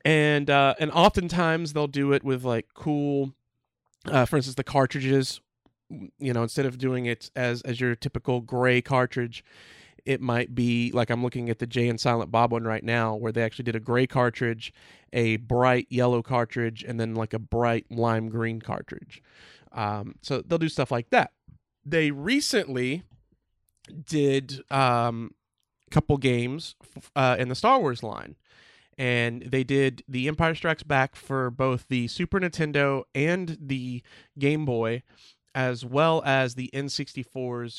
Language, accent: English, American